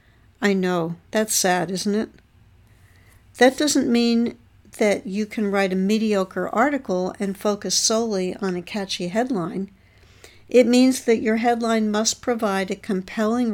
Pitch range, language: 175-230 Hz, English